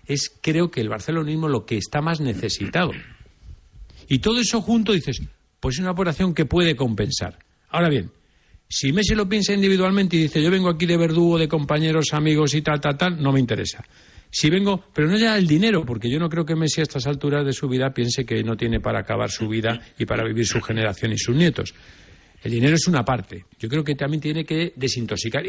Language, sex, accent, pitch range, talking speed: Spanish, male, Spanish, 115-170 Hz, 220 wpm